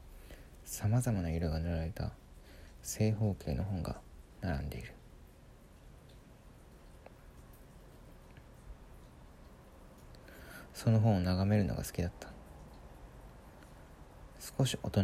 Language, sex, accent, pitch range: Japanese, male, native, 70-95 Hz